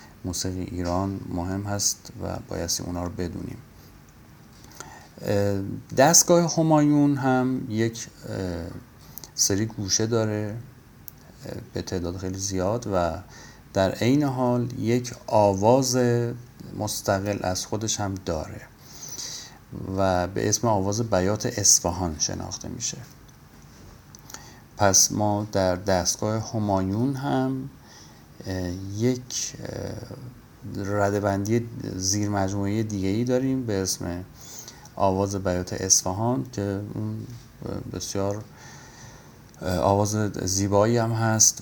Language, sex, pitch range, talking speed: Persian, male, 95-120 Hz, 90 wpm